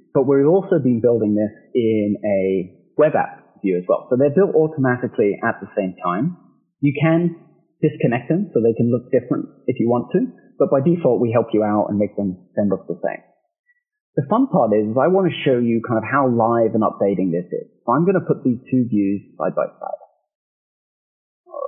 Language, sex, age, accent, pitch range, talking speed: English, male, 30-49, British, 115-170 Hz, 215 wpm